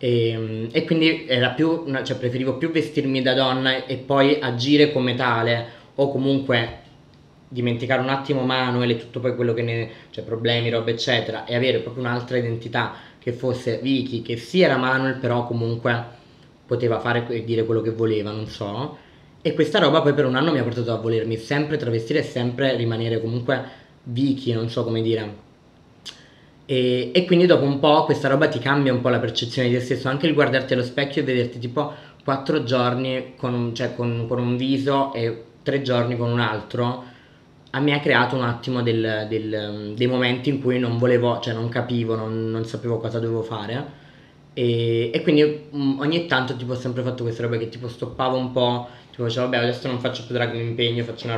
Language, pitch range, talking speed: Italian, 115-135 Hz, 195 wpm